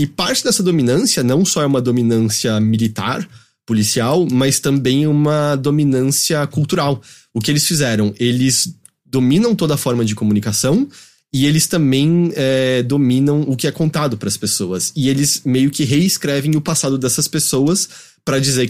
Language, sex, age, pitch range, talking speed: Portuguese, male, 20-39, 130-165 Hz, 155 wpm